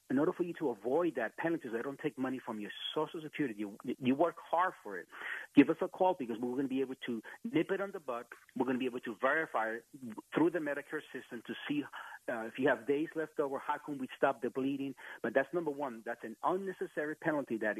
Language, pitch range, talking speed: English, 120-170 Hz, 250 wpm